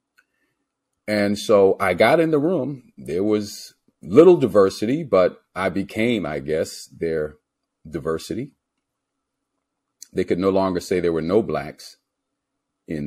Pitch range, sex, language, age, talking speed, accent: 85-115 Hz, male, English, 40-59, 130 wpm, American